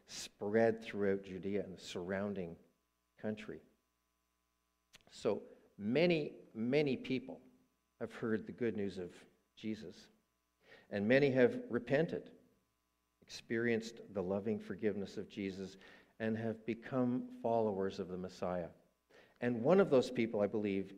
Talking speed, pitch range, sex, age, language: 120 wpm, 85-120 Hz, male, 50-69, English